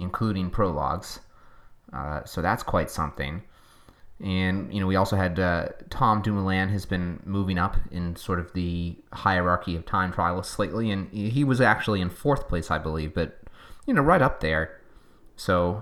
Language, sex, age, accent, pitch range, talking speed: English, male, 30-49, American, 90-115 Hz, 170 wpm